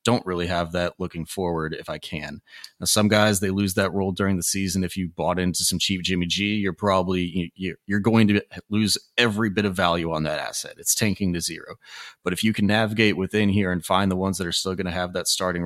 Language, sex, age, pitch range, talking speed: English, male, 30-49, 90-100 Hz, 240 wpm